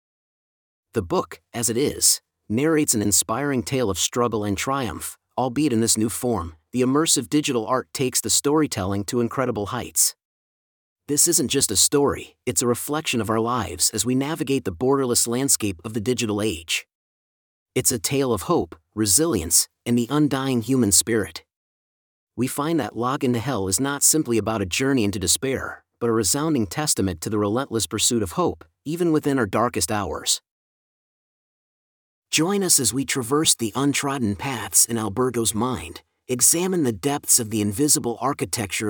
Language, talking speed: English, 165 wpm